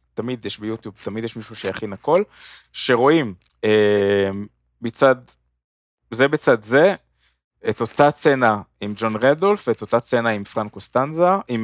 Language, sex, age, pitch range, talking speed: Hebrew, male, 20-39, 100-130 Hz, 115 wpm